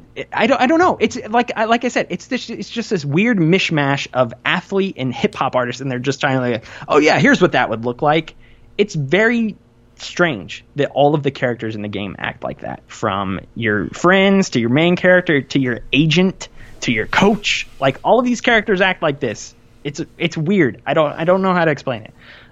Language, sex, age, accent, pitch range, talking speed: English, male, 20-39, American, 115-160 Hz, 225 wpm